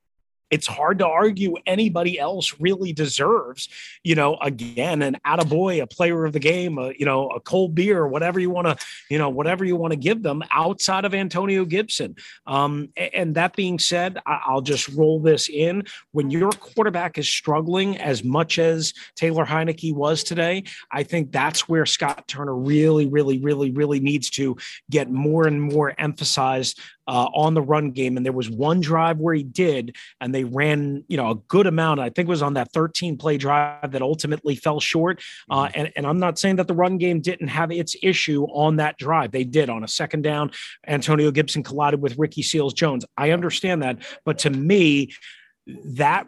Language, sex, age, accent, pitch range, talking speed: English, male, 30-49, American, 140-170 Hz, 195 wpm